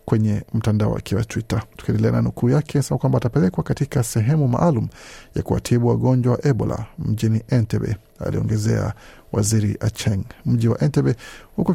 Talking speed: 150 wpm